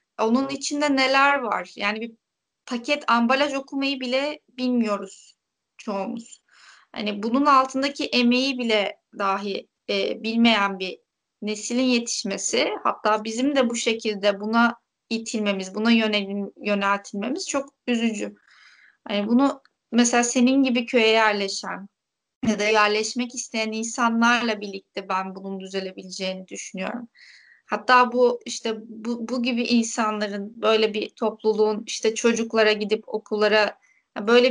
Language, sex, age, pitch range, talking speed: Turkish, female, 30-49, 210-245 Hz, 115 wpm